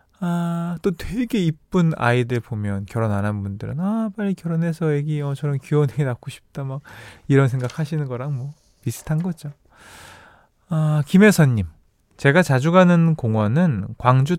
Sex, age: male, 20-39